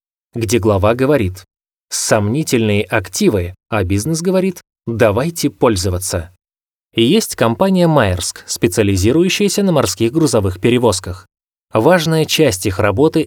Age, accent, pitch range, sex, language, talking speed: 20-39, native, 100-150 Hz, male, Russian, 100 wpm